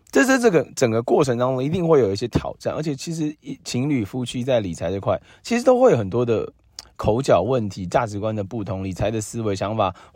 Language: Chinese